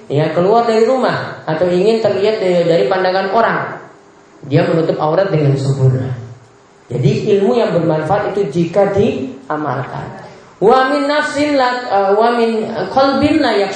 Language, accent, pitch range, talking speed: Indonesian, native, 150-220 Hz, 105 wpm